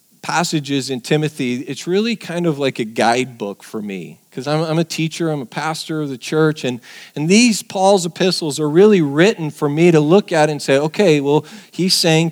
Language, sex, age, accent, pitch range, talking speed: English, male, 40-59, American, 130-165 Hz, 205 wpm